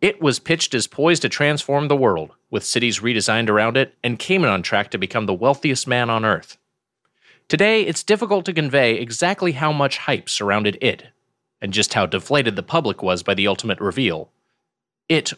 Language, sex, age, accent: English, male, 30-49, American